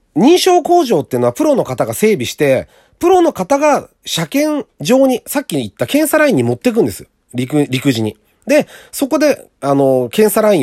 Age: 40-59